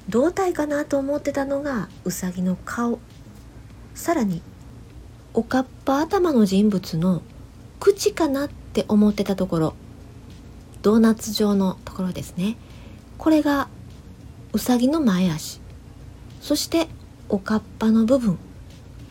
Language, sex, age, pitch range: Japanese, female, 40-59, 170-265 Hz